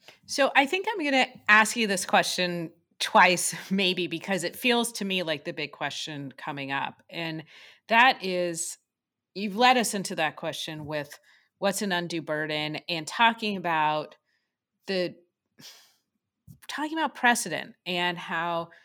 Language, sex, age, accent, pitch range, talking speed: English, female, 30-49, American, 165-225 Hz, 145 wpm